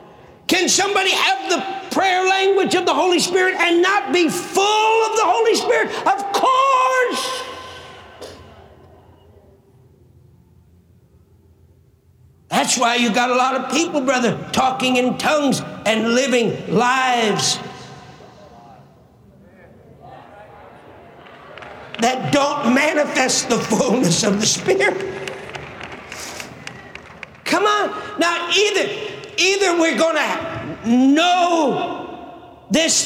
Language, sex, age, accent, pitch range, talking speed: English, male, 50-69, American, 275-370 Hz, 95 wpm